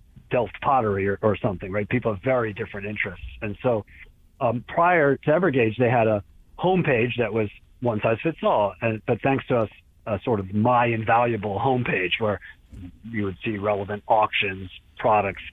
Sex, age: male, 40-59